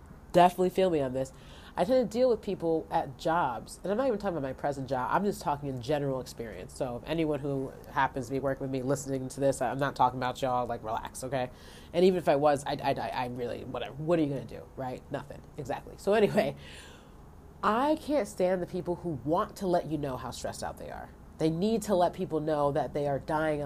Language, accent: English, American